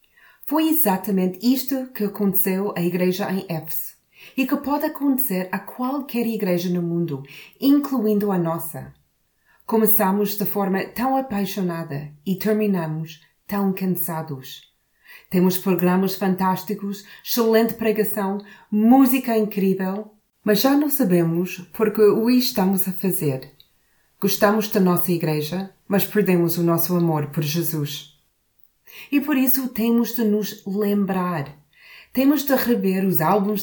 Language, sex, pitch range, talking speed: Portuguese, female, 175-225 Hz, 125 wpm